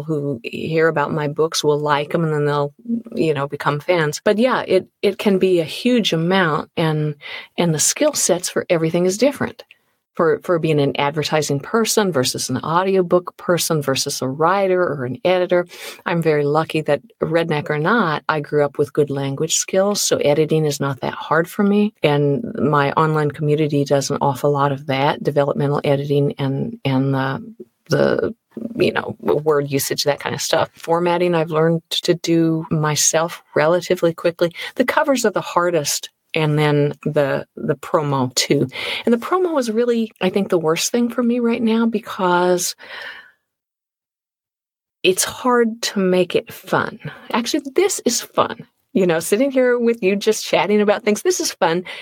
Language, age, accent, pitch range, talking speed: English, 50-69, American, 150-210 Hz, 175 wpm